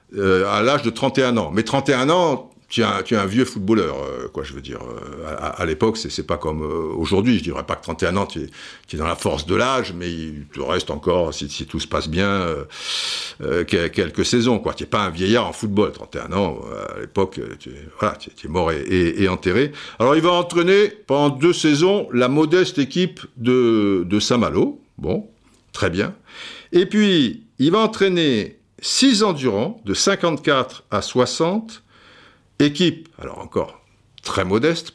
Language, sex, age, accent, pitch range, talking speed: French, male, 60-79, French, 95-160 Hz, 200 wpm